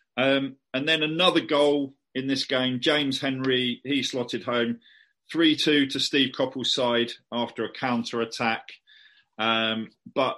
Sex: male